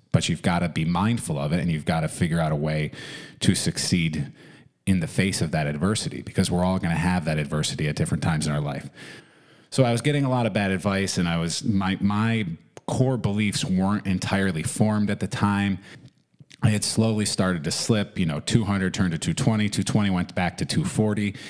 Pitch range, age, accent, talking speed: 85-105 Hz, 30-49, American, 215 wpm